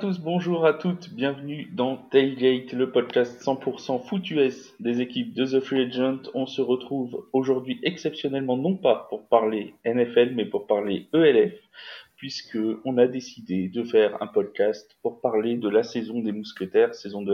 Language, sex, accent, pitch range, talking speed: French, male, French, 110-180 Hz, 175 wpm